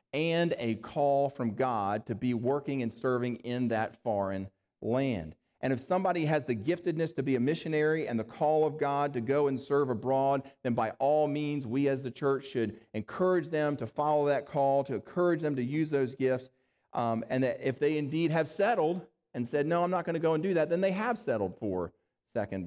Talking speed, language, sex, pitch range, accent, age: 215 wpm, English, male, 110-150 Hz, American, 40-59